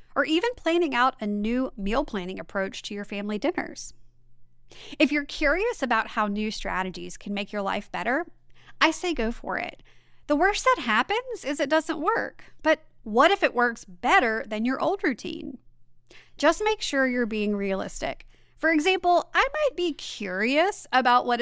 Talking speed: 175 wpm